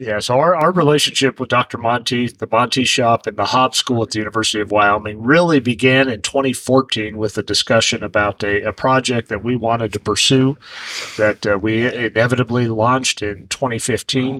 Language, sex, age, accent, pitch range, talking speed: English, male, 40-59, American, 110-130 Hz, 180 wpm